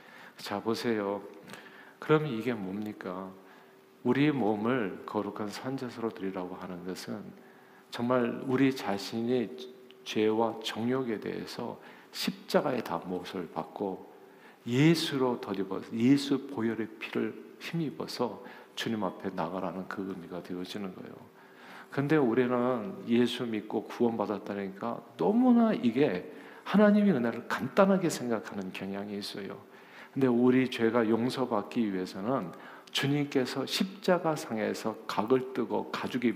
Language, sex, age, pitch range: Korean, male, 50-69, 100-140 Hz